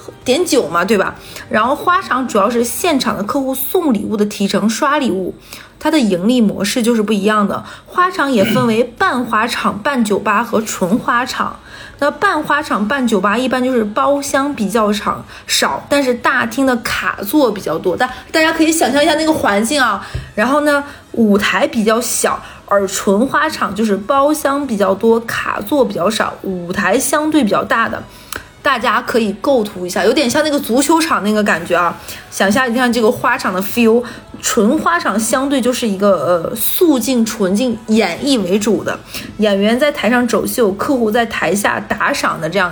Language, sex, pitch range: Chinese, female, 210-285 Hz